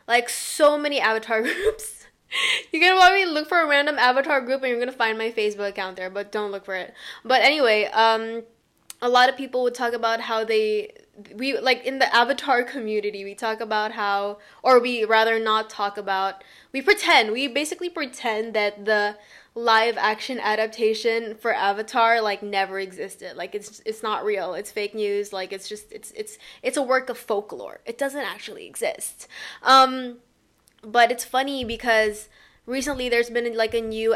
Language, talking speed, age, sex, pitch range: English, 185 wpm, 10-29, female, 220-265 Hz